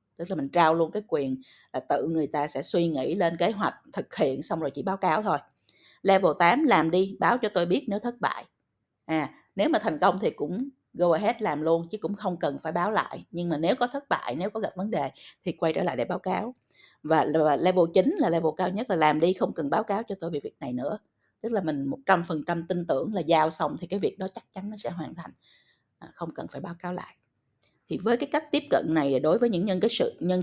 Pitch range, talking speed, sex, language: 160-220 Hz, 265 wpm, female, Vietnamese